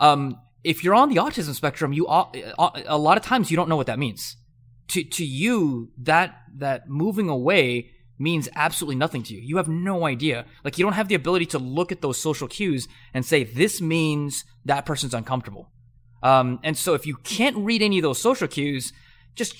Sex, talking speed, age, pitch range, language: male, 200 wpm, 20-39, 125-165 Hz, English